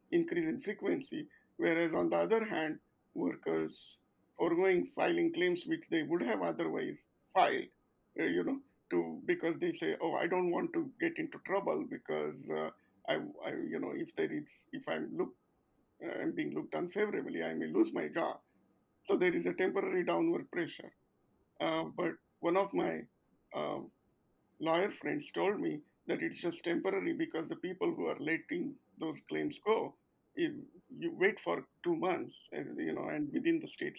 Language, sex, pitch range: English, male, 235-345 Hz